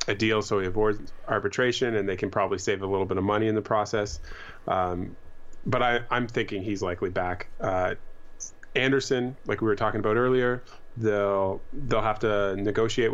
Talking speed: 185 wpm